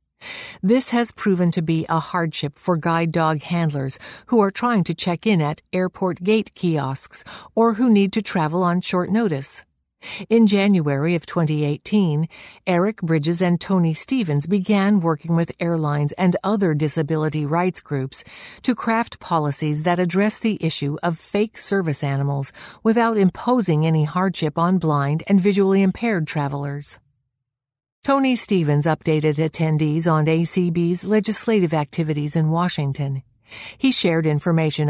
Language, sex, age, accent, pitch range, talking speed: English, female, 50-69, American, 150-195 Hz, 140 wpm